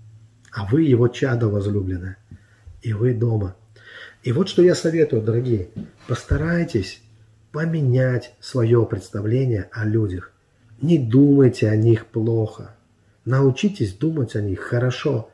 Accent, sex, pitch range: native, male, 110-135 Hz